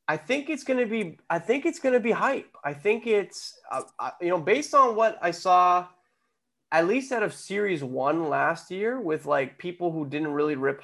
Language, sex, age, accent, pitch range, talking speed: English, male, 20-39, American, 140-185 Hz, 220 wpm